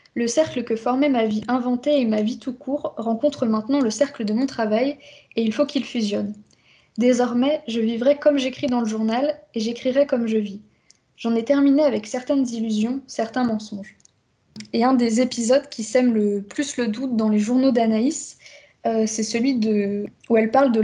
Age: 20-39